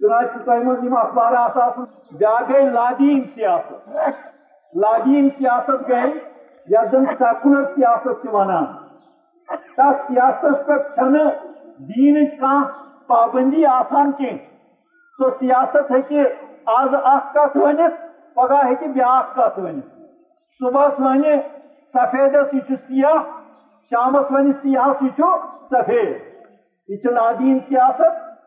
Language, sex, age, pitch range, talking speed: Urdu, male, 50-69, 255-300 Hz, 80 wpm